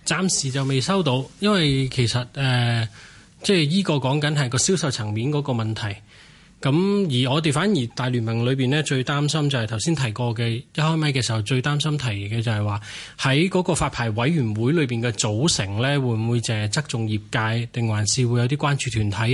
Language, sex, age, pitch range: Chinese, male, 20-39, 120-150 Hz